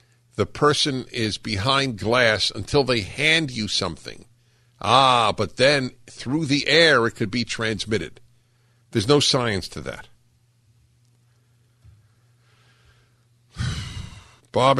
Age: 50-69